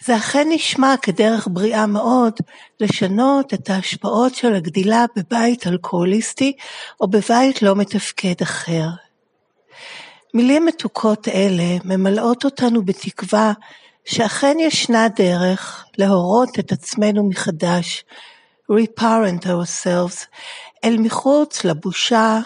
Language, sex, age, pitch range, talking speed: Hebrew, female, 60-79, 190-240 Hz, 95 wpm